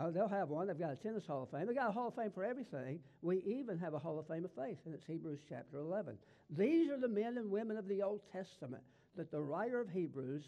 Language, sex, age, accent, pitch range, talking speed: English, male, 60-79, American, 150-195 Hz, 270 wpm